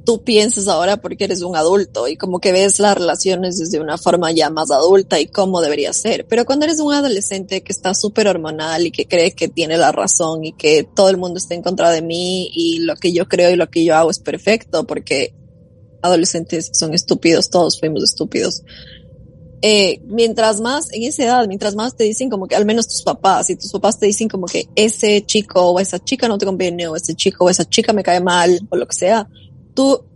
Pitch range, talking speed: 170-215 Hz, 225 wpm